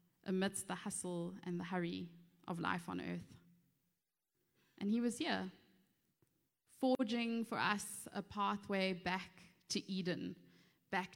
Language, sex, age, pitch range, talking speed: English, female, 20-39, 170-195 Hz, 125 wpm